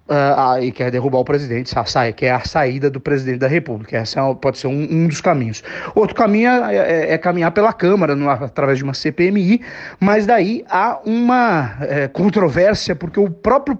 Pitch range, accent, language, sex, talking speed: 135-180 Hz, Brazilian, Portuguese, male, 180 wpm